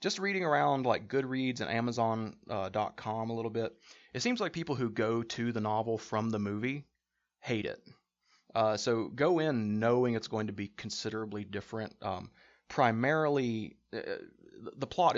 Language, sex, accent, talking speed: English, male, American, 160 wpm